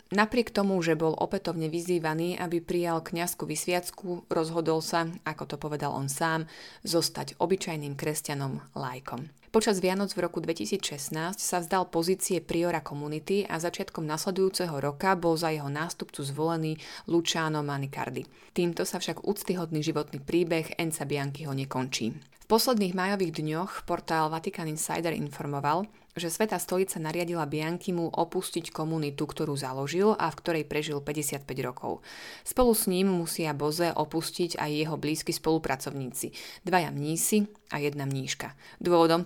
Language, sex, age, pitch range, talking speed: Slovak, female, 30-49, 155-180 Hz, 140 wpm